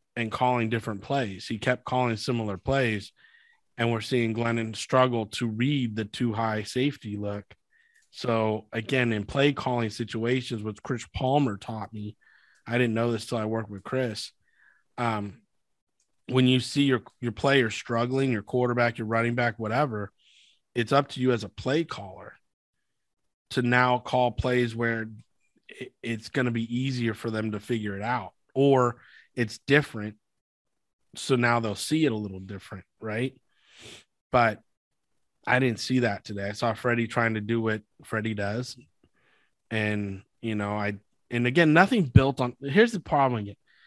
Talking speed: 165 wpm